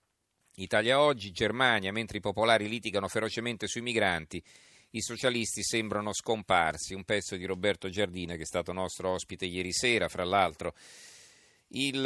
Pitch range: 95-115 Hz